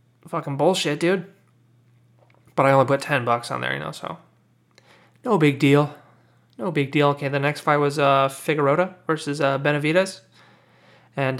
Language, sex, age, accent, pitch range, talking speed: English, male, 30-49, American, 135-175 Hz, 165 wpm